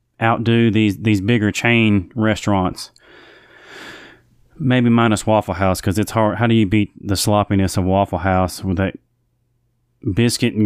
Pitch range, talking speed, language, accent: 105-120 Hz, 145 wpm, English, American